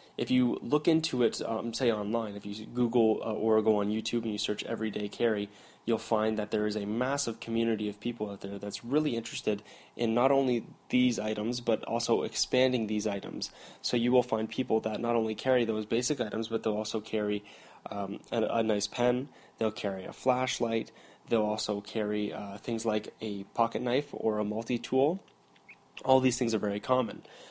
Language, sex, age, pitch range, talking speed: English, male, 10-29, 105-120 Hz, 195 wpm